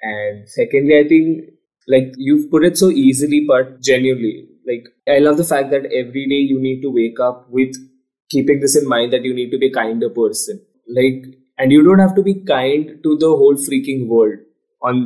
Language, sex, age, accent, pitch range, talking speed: Hindi, male, 20-39, native, 130-170 Hz, 205 wpm